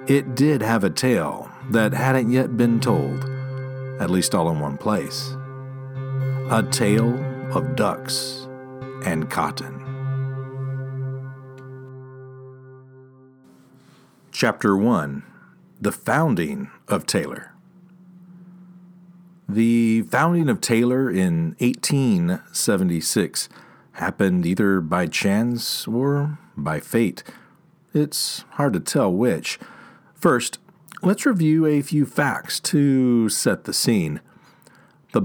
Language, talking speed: English, 95 wpm